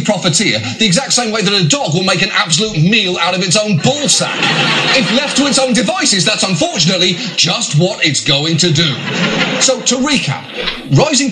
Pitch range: 150-205 Hz